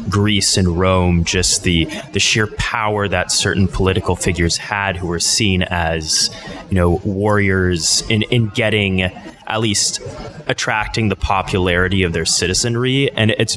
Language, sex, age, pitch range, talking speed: English, male, 20-39, 90-110 Hz, 145 wpm